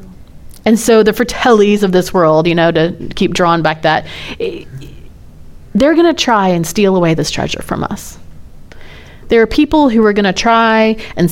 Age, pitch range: 30-49, 165-215 Hz